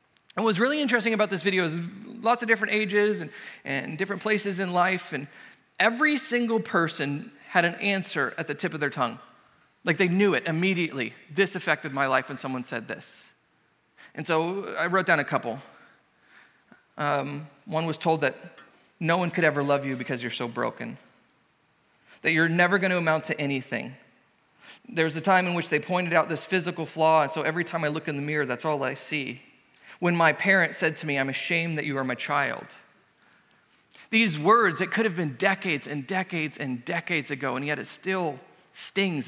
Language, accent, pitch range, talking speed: English, American, 150-195 Hz, 195 wpm